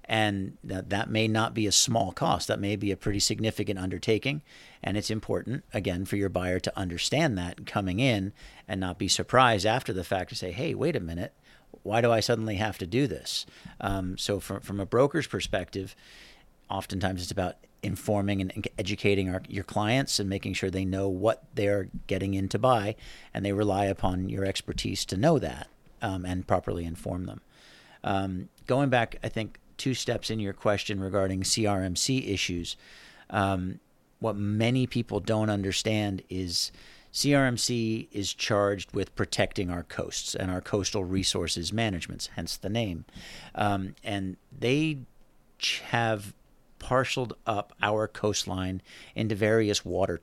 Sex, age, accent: male, 40-59, American